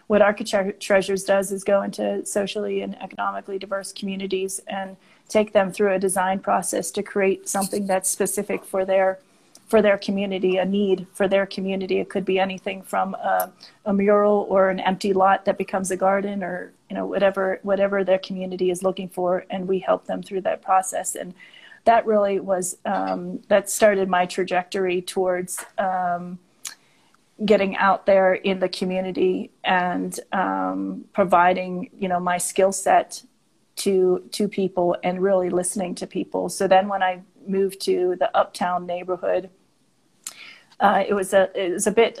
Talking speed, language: 165 wpm, English